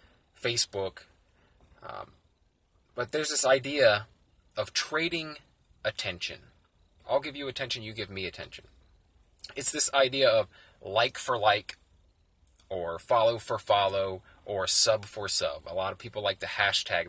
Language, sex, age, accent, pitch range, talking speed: English, male, 20-39, American, 85-130 Hz, 135 wpm